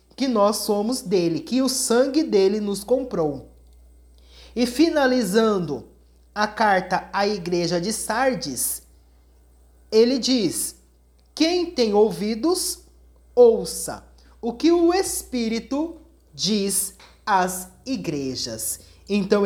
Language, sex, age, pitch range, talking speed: Portuguese, male, 30-49, 180-255 Hz, 100 wpm